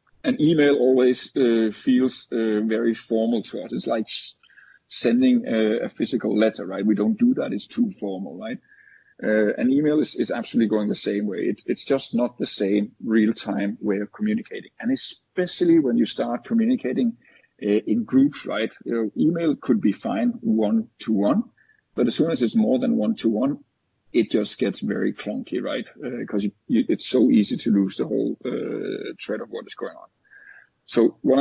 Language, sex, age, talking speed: English, male, 50-69, 190 wpm